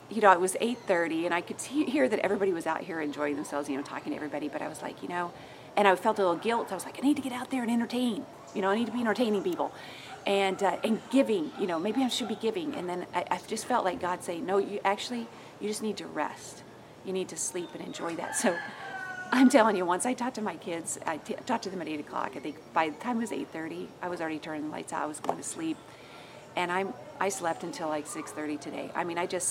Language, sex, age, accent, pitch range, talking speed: English, female, 40-59, American, 170-220 Hz, 280 wpm